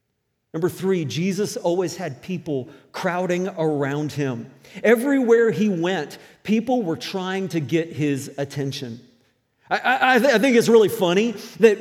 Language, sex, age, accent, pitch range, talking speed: English, male, 40-59, American, 170-240 Hz, 135 wpm